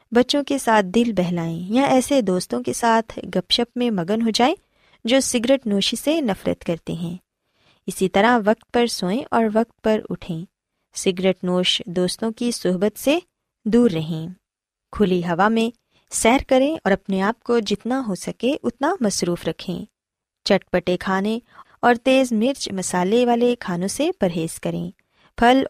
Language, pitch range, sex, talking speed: Urdu, 180-245 Hz, female, 160 wpm